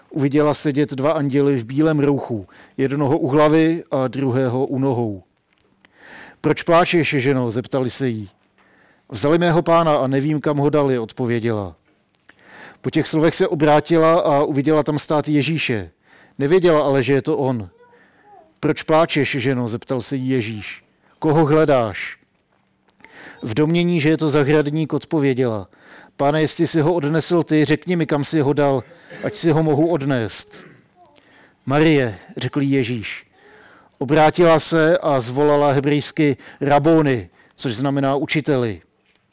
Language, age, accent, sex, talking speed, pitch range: Czech, 50-69, native, male, 135 wpm, 135-160 Hz